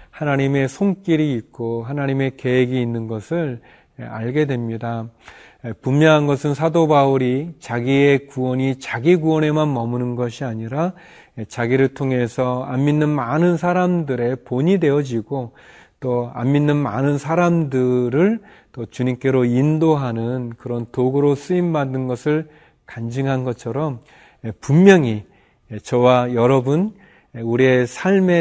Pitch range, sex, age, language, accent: 120-150 Hz, male, 40-59, Korean, native